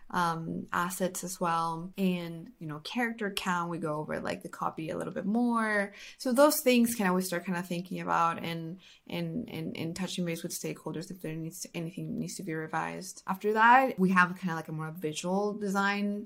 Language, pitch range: English, 170-205 Hz